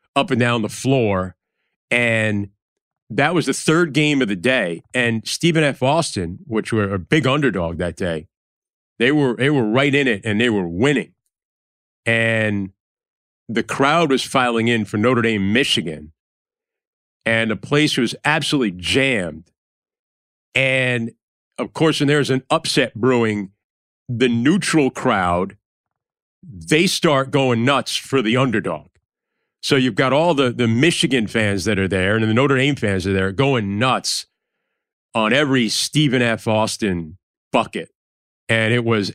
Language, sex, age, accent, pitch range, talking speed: English, male, 40-59, American, 105-135 Hz, 150 wpm